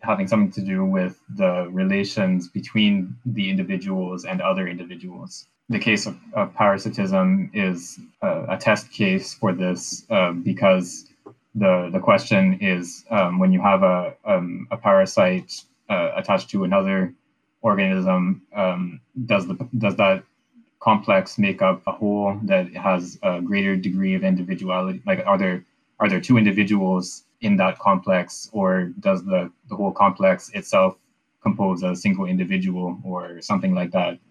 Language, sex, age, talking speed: English, male, 20-39, 150 wpm